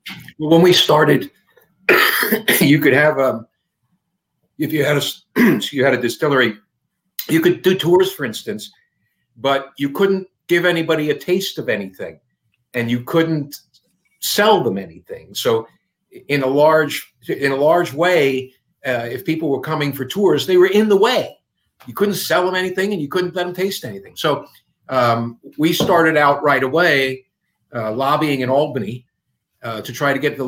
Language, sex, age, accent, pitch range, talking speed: English, male, 50-69, American, 125-165 Hz, 165 wpm